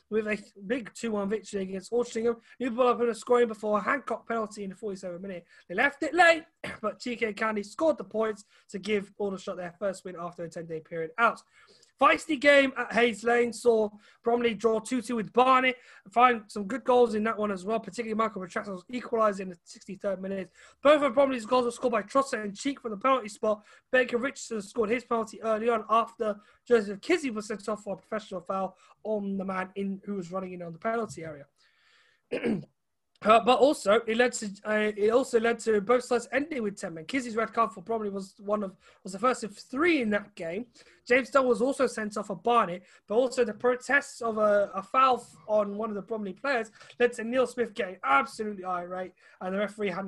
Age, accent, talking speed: 20-39, British, 215 wpm